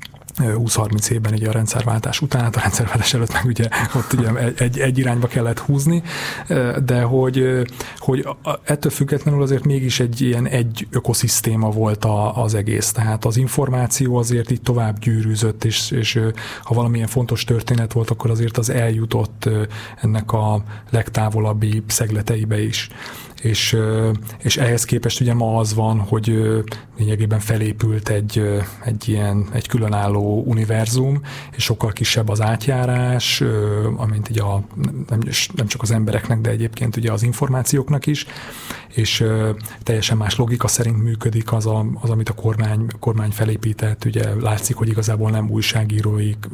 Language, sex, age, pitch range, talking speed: Hungarian, male, 30-49, 110-125 Hz, 140 wpm